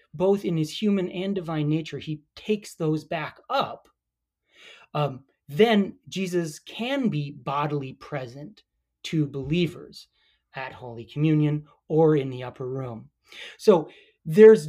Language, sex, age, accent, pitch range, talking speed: English, male, 30-49, American, 140-180 Hz, 125 wpm